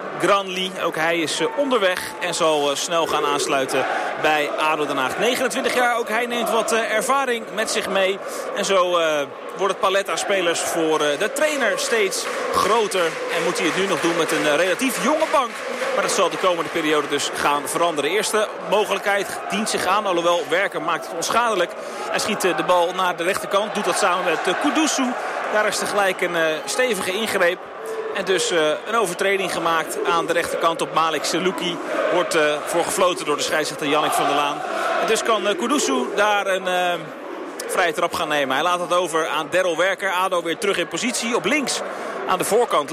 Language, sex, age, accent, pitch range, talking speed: Dutch, male, 30-49, Dutch, 170-225 Hz, 185 wpm